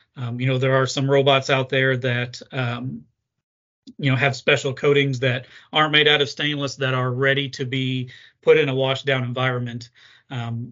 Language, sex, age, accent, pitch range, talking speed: English, male, 30-49, American, 130-140 Hz, 190 wpm